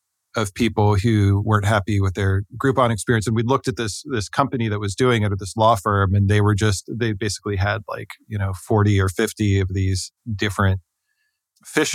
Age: 40-59